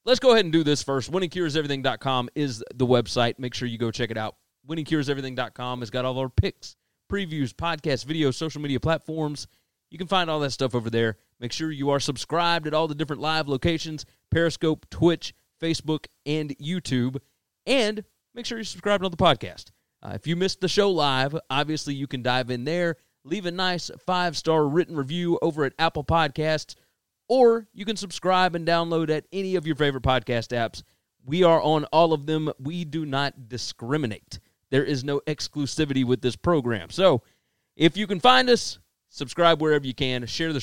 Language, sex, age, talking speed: English, male, 30-49, 190 wpm